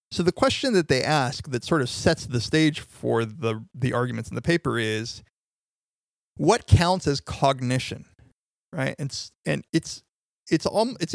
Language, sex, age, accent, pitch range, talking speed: English, male, 30-49, American, 120-155 Hz, 165 wpm